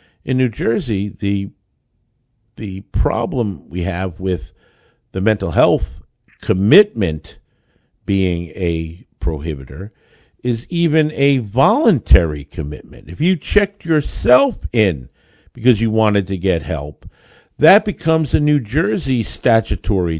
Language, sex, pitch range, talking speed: English, male, 95-155 Hz, 115 wpm